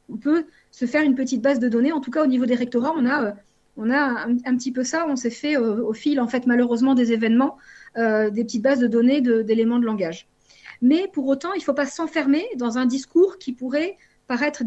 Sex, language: female, French